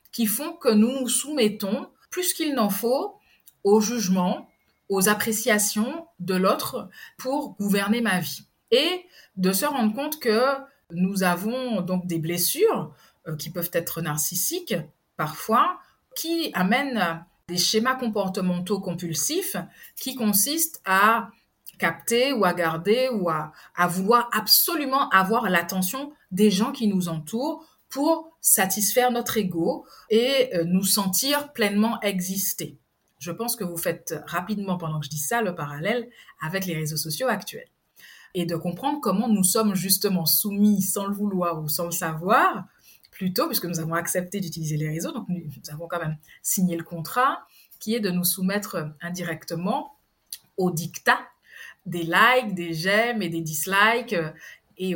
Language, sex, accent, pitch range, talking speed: French, female, French, 175-240 Hz, 150 wpm